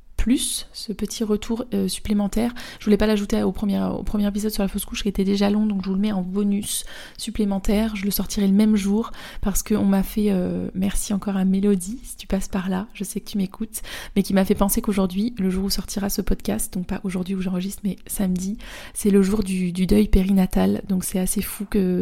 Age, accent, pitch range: 20-39, French, 190-210 Hz